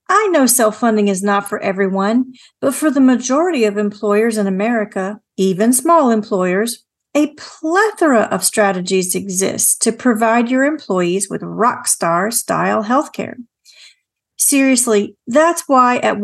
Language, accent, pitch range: English, American, 205-255 Hz